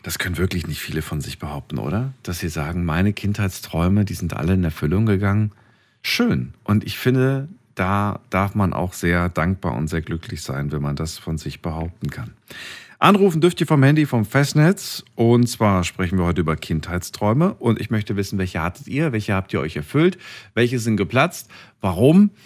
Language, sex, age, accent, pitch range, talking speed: German, male, 40-59, German, 90-120 Hz, 190 wpm